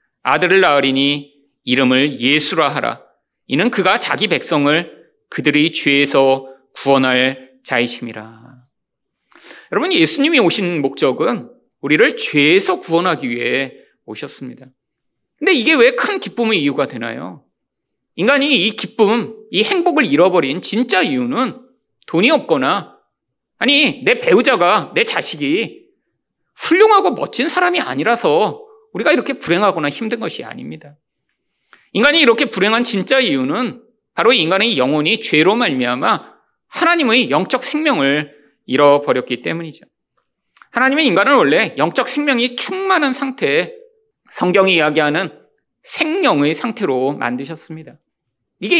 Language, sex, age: Korean, male, 40-59